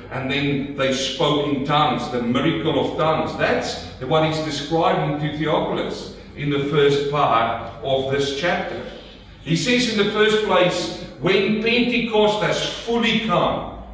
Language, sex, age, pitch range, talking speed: English, male, 50-69, 155-210 Hz, 145 wpm